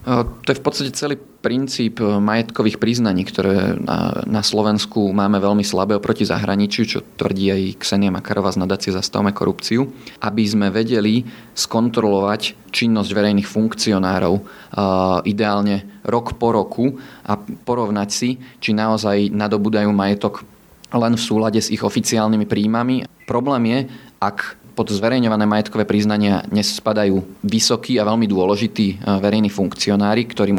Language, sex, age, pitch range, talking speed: Slovak, male, 20-39, 100-115 Hz, 130 wpm